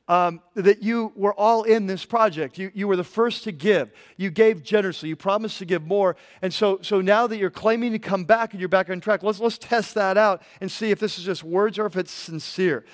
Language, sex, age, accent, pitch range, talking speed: English, male, 40-59, American, 185-220 Hz, 250 wpm